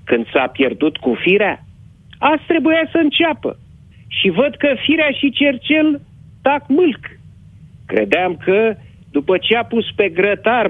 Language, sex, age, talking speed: Romanian, male, 50-69, 140 wpm